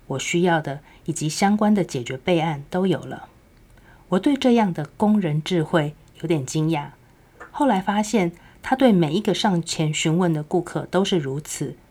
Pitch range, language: 150-190 Hz, Chinese